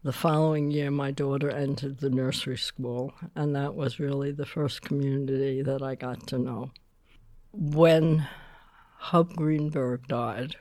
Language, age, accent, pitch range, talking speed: English, 60-79, American, 130-150 Hz, 140 wpm